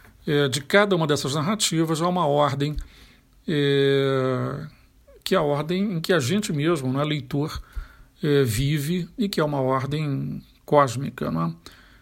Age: 50-69